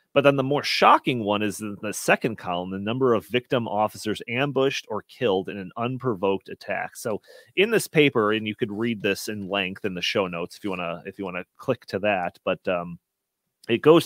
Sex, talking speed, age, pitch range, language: male, 220 wpm, 30-49, 100-135 Hz, English